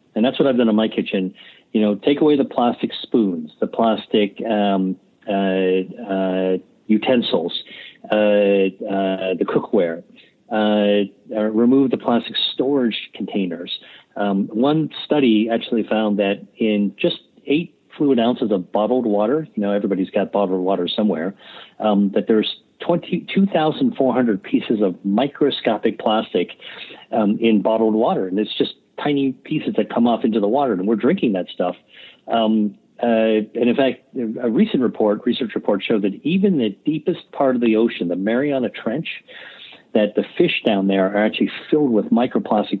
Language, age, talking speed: English, 50-69, 155 wpm